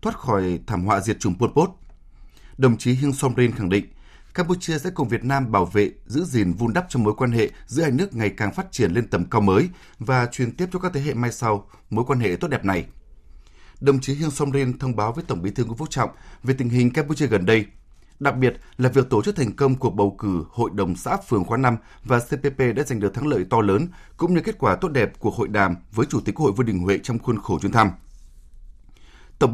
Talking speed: 245 wpm